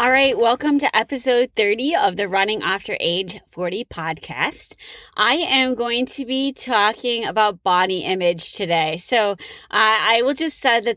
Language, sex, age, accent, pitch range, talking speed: English, female, 20-39, American, 180-235 Hz, 165 wpm